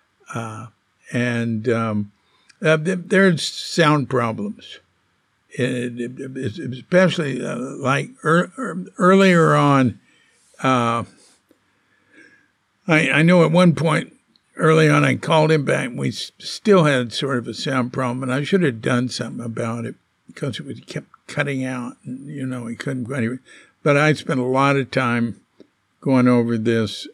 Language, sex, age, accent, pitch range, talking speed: English, male, 60-79, American, 110-145 Hz, 155 wpm